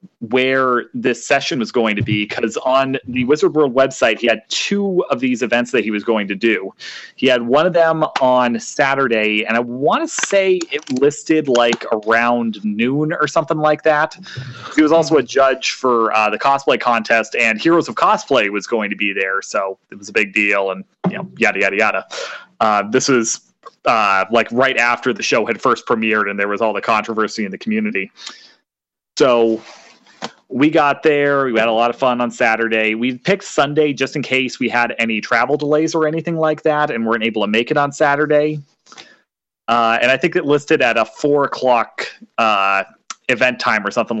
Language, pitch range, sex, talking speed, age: English, 115-150 Hz, male, 200 wpm, 30-49